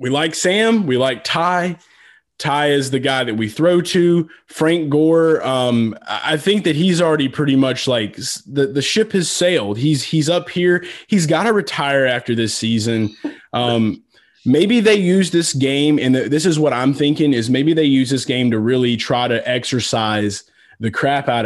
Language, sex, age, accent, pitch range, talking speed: English, male, 20-39, American, 115-160 Hz, 185 wpm